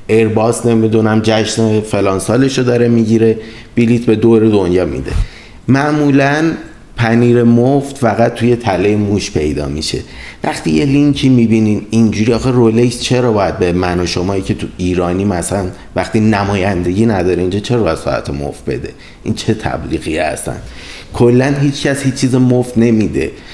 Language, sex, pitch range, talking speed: Persian, male, 95-120 Hz, 150 wpm